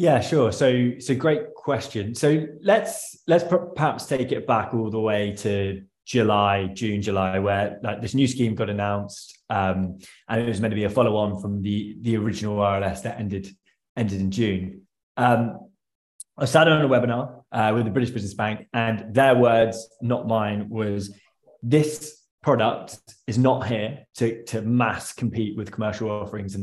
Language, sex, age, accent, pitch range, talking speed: English, male, 20-39, British, 105-130 Hz, 180 wpm